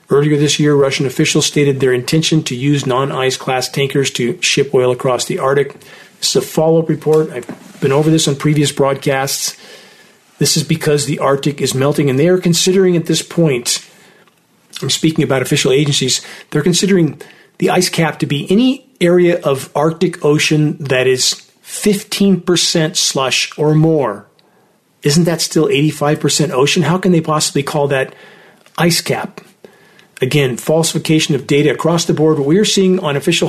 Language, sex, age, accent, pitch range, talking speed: English, male, 40-59, American, 140-165 Hz, 170 wpm